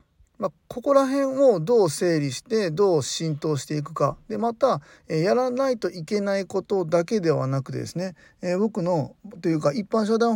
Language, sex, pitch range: Japanese, male, 145-195 Hz